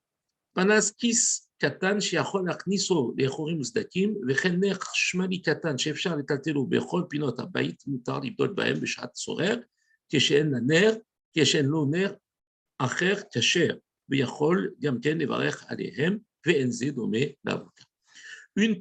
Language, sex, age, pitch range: French, male, 50-69, 140-195 Hz